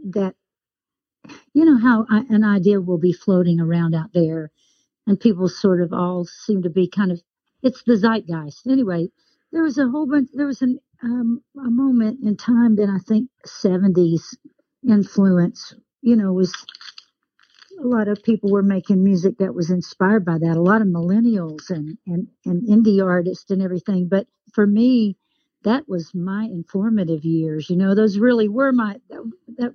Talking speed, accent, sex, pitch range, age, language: 170 wpm, American, female, 180-230 Hz, 60-79, English